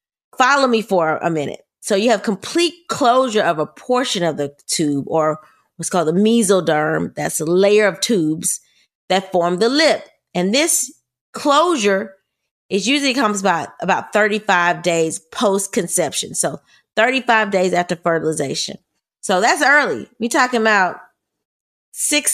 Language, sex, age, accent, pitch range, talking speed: English, female, 30-49, American, 175-235 Hz, 140 wpm